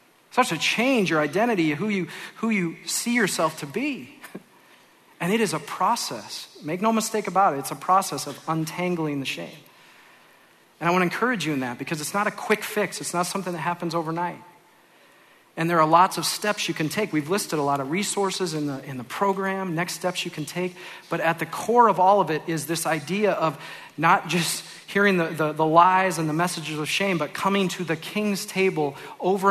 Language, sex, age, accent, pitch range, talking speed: English, male, 40-59, American, 155-195 Hz, 220 wpm